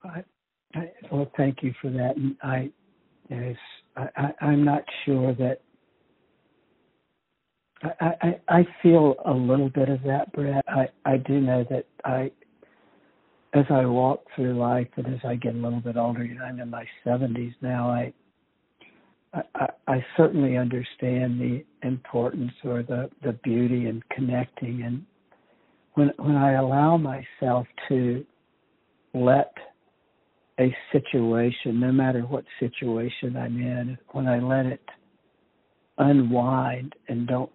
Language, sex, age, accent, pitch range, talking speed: English, male, 60-79, American, 120-140 Hz, 140 wpm